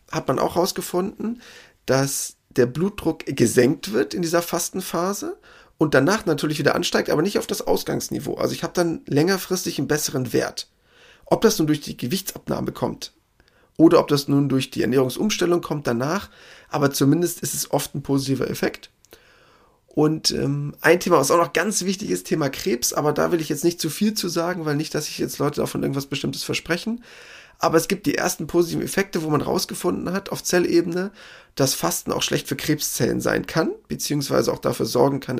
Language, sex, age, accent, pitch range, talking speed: German, male, 30-49, German, 140-180 Hz, 190 wpm